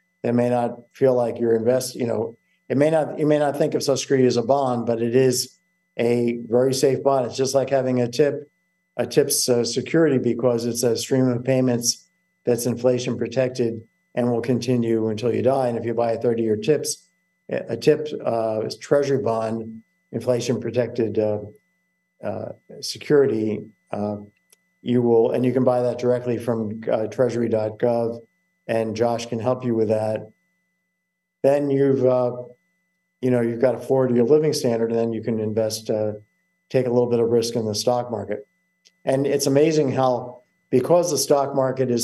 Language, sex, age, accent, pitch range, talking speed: English, male, 50-69, American, 115-140 Hz, 180 wpm